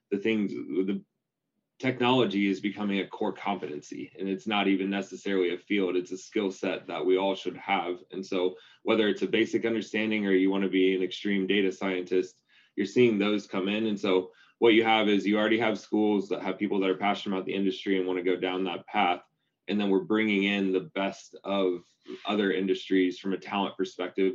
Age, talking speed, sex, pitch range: 20-39, 205 wpm, male, 90-100 Hz